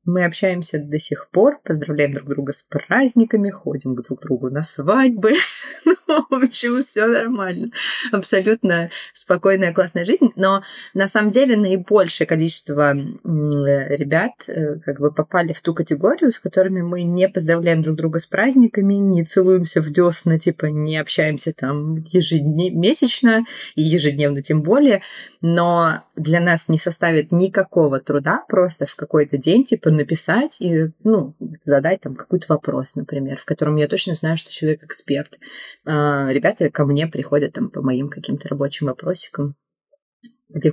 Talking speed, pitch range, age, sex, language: 145 wpm, 150-220 Hz, 20-39, female, Russian